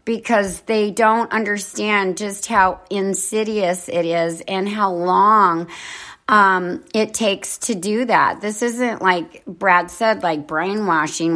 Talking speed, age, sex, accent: 130 wpm, 40-59, female, American